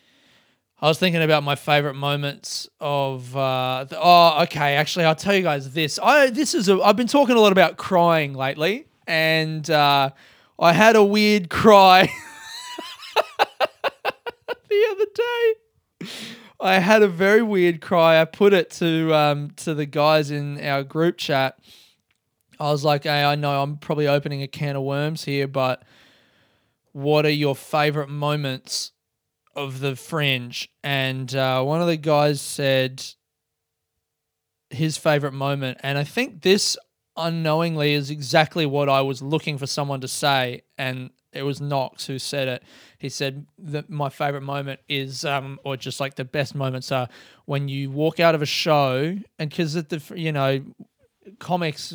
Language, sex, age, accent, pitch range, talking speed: English, male, 20-39, Australian, 135-165 Hz, 165 wpm